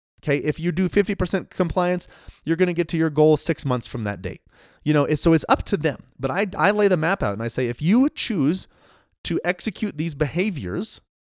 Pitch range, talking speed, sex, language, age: 120-180 Hz, 225 wpm, male, English, 30-49